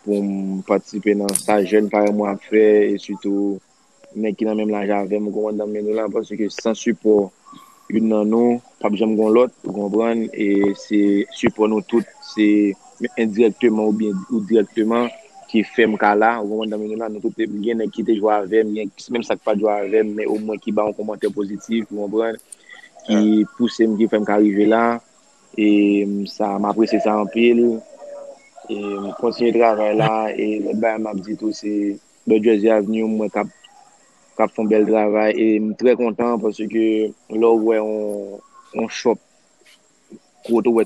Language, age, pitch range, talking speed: French, 20-39, 105-115 Hz, 145 wpm